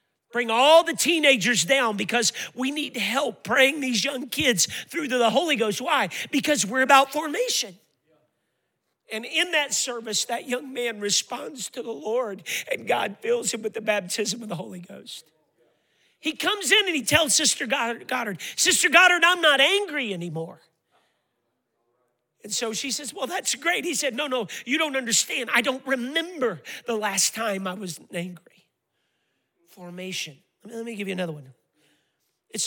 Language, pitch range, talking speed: English, 200-270 Hz, 165 wpm